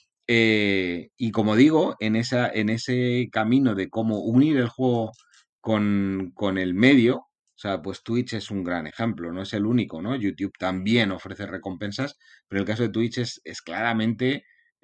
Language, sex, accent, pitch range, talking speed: Spanish, male, Spanish, 100-115 Hz, 165 wpm